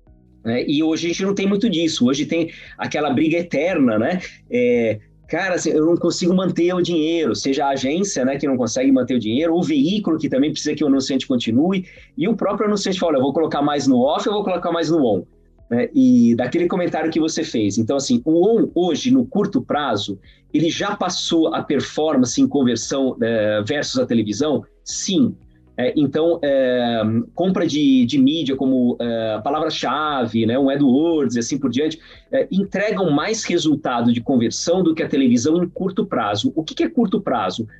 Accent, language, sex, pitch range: Brazilian, Portuguese, male, 135-210 Hz